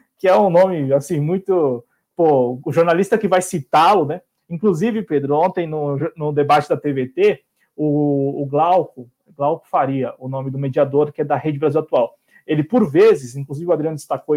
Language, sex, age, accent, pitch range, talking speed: Portuguese, male, 20-39, Brazilian, 150-215 Hz, 180 wpm